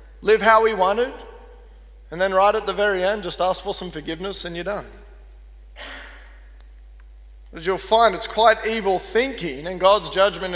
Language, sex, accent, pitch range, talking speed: English, male, Australian, 145-215 Hz, 165 wpm